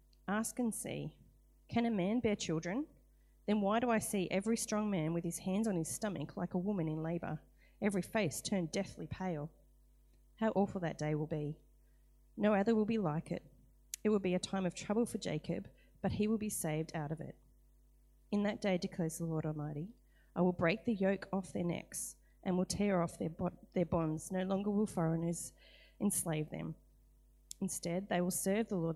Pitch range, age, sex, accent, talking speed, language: 160-200 Hz, 30-49, female, Australian, 195 wpm, English